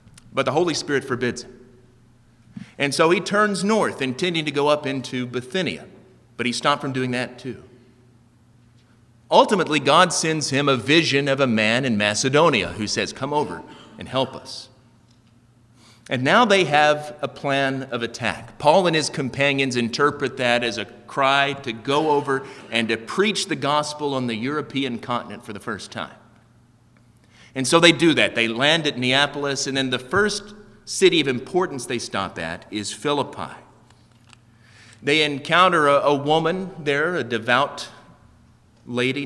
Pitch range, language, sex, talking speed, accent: 120-150 Hz, English, male, 160 wpm, American